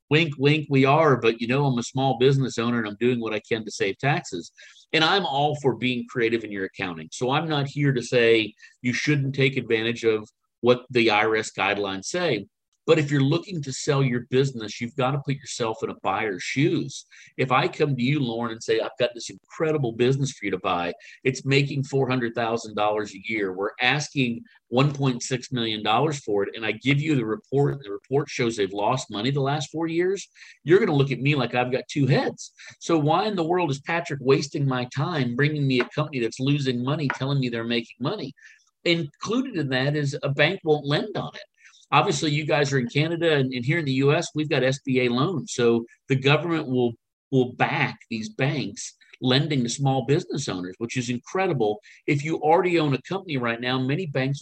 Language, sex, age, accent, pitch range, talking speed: English, male, 50-69, American, 120-150 Hz, 210 wpm